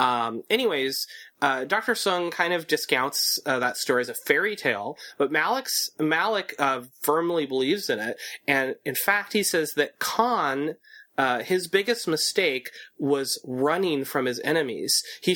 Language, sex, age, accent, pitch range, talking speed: English, male, 30-49, American, 135-190 Hz, 155 wpm